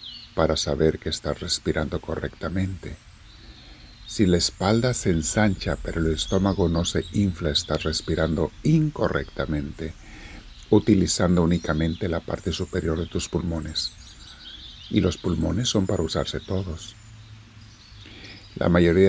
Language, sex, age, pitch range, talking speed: Spanish, male, 50-69, 80-100 Hz, 115 wpm